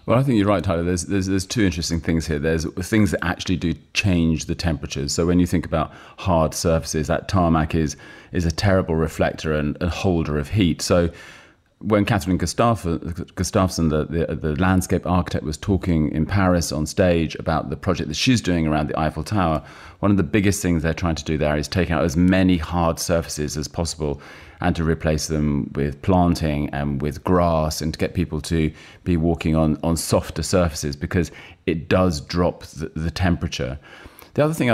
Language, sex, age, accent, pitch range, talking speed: English, male, 30-49, British, 80-95 Hz, 200 wpm